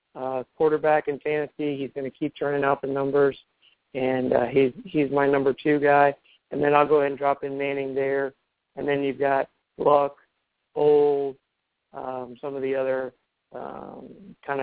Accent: American